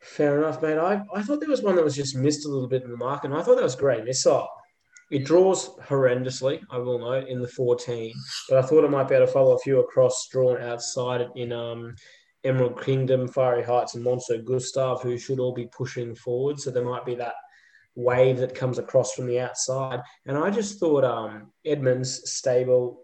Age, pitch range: 20-39, 125-145 Hz